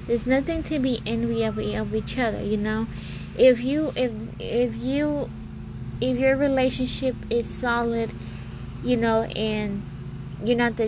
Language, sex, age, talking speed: English, female, 20-39, 145 wpm